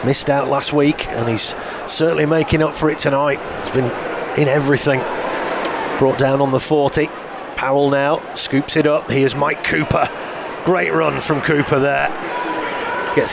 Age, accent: 30-49, British